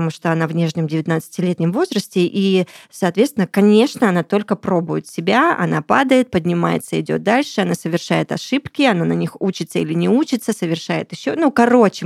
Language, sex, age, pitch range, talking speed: Russian, female, 20-39, 170-230 Hz, 165 wpm